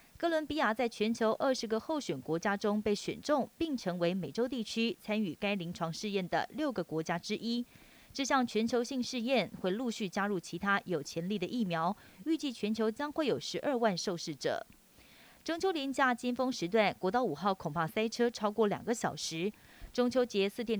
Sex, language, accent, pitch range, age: female, Chinese, native, 185-250 Hz, 30-49